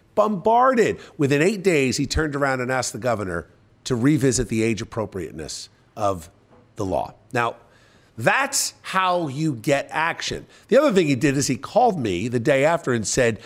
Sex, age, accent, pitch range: male, 50-69, American, 125-175 Hz